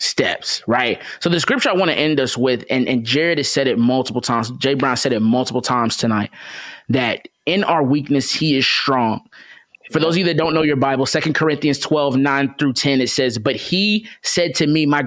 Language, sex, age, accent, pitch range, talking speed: English, male, 20-39, American, 125-150 Hz, 225 wpm